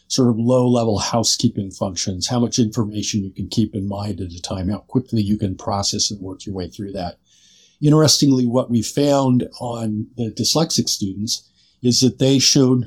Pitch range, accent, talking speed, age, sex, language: 105-125 Hz, American, 180 wpm, 50-69, male, English